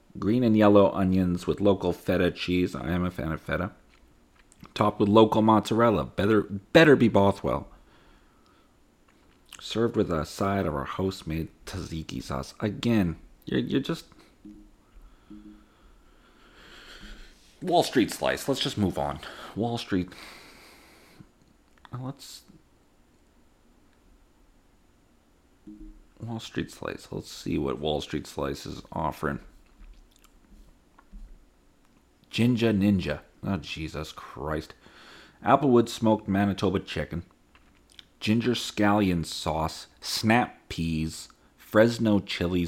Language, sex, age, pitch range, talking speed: English, male, 40-59, 80-110 Hz, 105 wpm